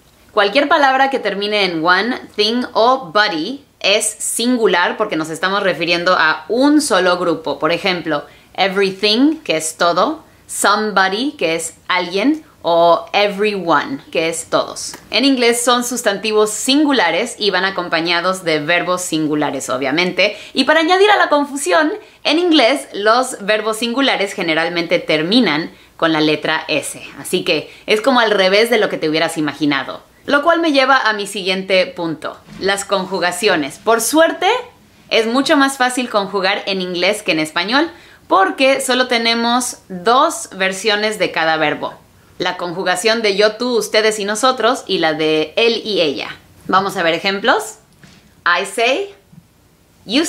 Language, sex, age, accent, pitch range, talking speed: English, female, 20-39, Mexican, 170-250 Hz, 150 wpm